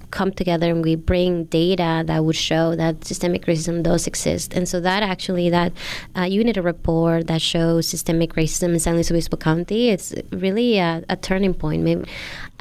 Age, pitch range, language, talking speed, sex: 20-39, 165-185 Hz, English, 185 wpm, female